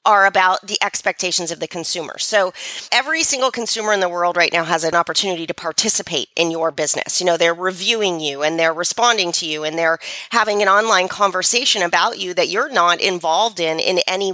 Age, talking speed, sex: 40-59, 205 wpm, female